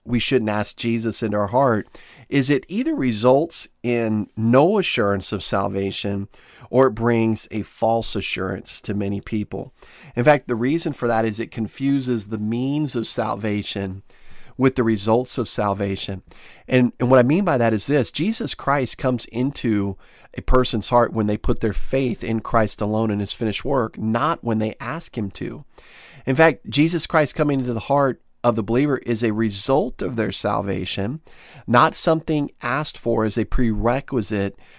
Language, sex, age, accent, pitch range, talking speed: English, male, 40-59, American, 110-135 Hz, 175 wpm